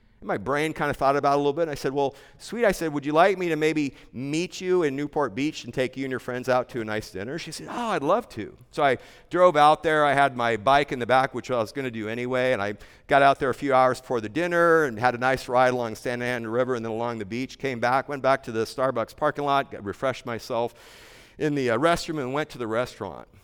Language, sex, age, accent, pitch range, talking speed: English, male, 50-69, American, 120-160 Hz, 280 wpm